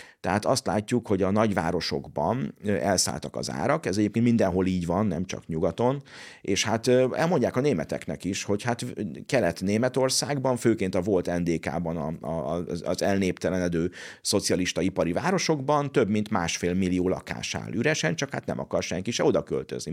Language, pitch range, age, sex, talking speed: Hungarian, 85-115 Hz, 50-69, male, 150 wpm